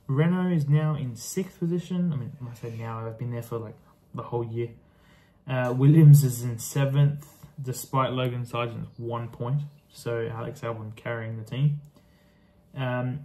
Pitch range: 120-145 Hz